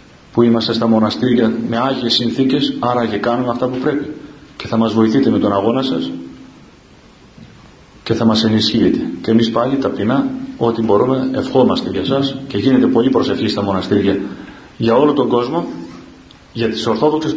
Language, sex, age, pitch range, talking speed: Greek, male, 40-59, 115-150 Hz, 160 wpm